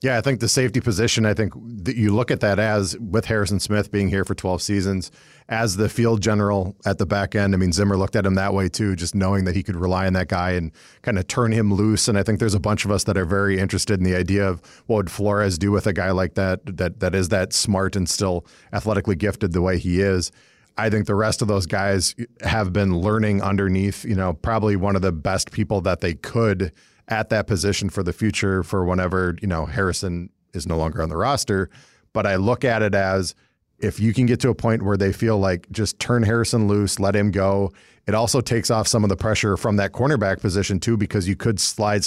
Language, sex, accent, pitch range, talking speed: English, male, American, 95-110 Hz, 245 wpm